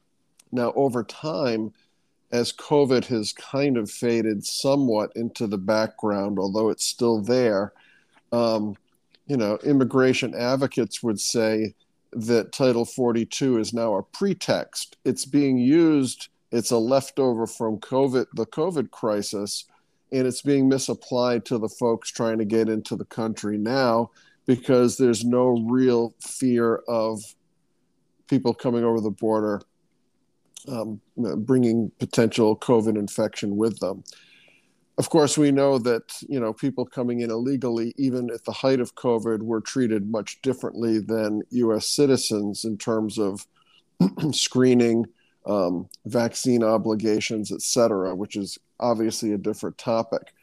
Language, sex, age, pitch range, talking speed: English, male, 50-69, 110-130 Hz, 135 wpm